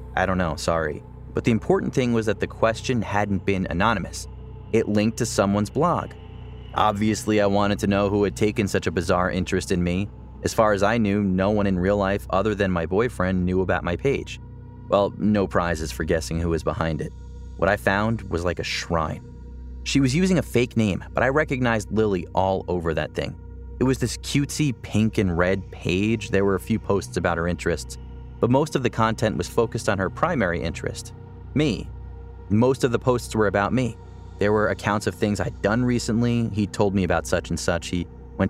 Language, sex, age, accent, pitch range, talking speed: English, male, 30-49, American, 90-115 Hz, 210 wpm